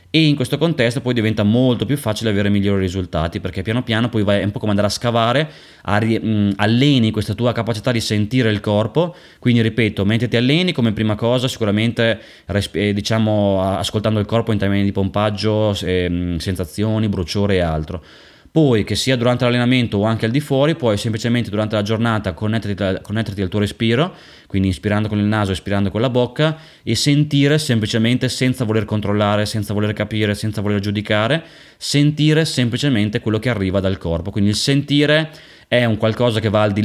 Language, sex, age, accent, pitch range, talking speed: Italian, male, 20-39, native, 100-120 Hz, 180 wpm